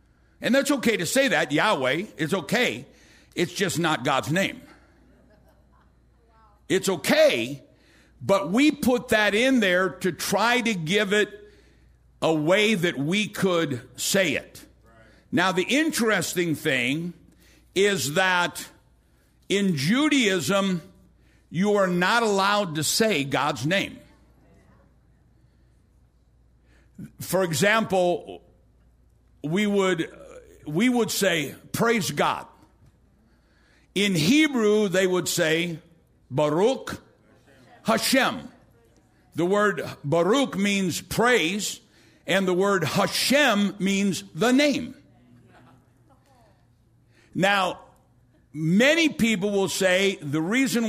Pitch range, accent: 150-215 Hz, American